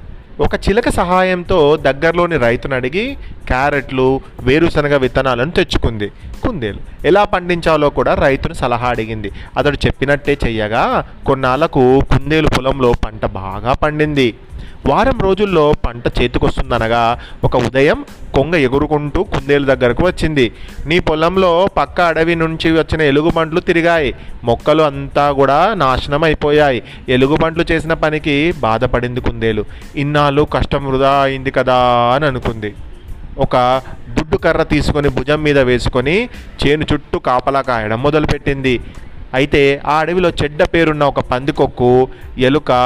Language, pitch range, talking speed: Telugu, 125-155 Hz, 110 wpm